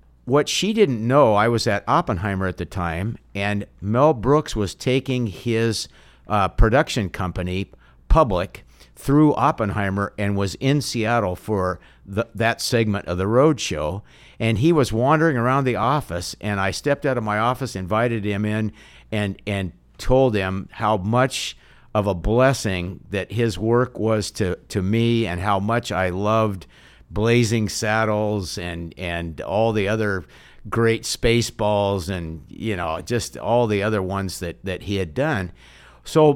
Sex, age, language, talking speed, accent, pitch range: male, 60-79, English, 155 wpm, American, 95-125 Hz